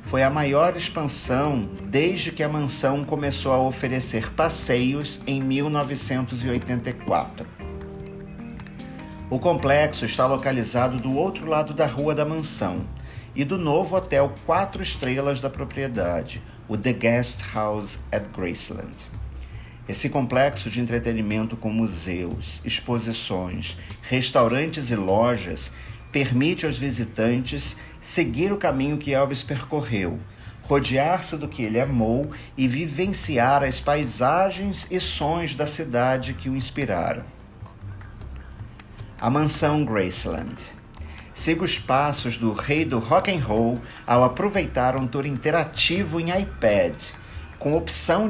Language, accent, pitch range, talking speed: Portuguese, Brazilian, 115-150 Hz, 115 wpm